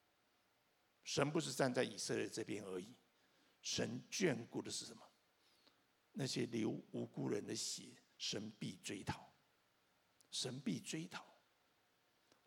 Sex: male